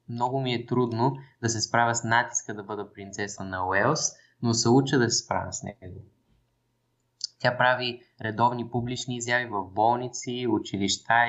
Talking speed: 160 wpm